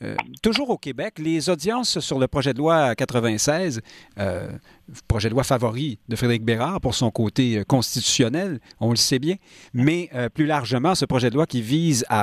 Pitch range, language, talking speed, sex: 115-155 Hz, French, 190 wpm, male